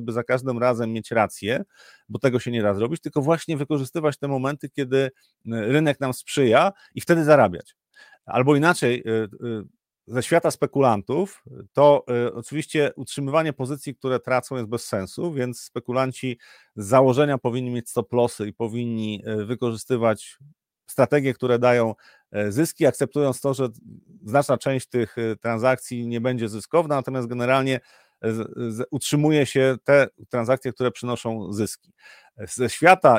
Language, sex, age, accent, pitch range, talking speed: Polish, male, 40-59, native, 115-140 Hz, 135 wpm